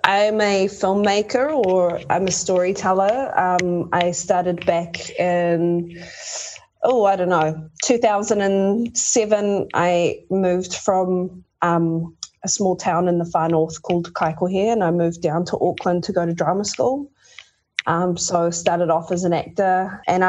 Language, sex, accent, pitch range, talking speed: English, female, Australian, 175-205 Hz, 150 wpm